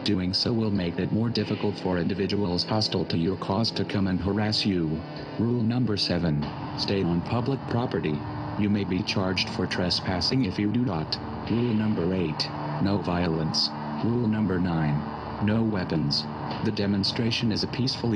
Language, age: English, 40-59